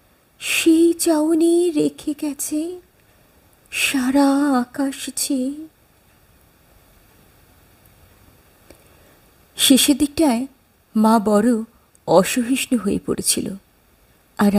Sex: female